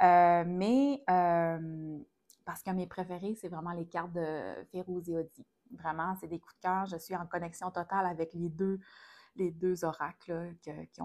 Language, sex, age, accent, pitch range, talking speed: French, female, 30-49, Canadian, 175-220 Hz, 180 wpm